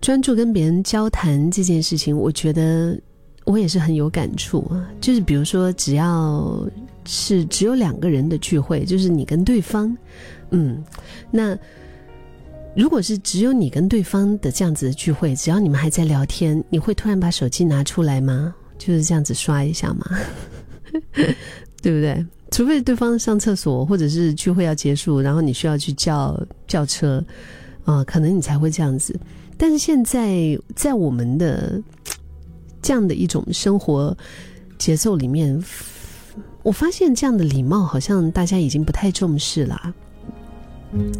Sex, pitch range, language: female, 150-190 Hz, Chinese